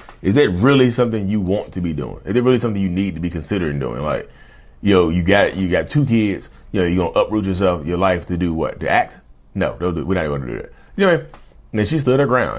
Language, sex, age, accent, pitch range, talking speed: English, male, 30-49, American, 85-115 Hz, 300 wpm